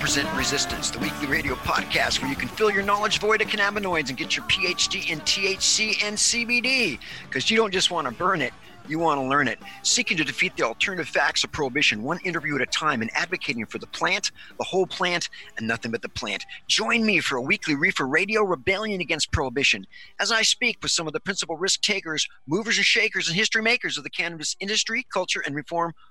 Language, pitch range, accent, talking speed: English, 155-210 Hz, American, 220 wpm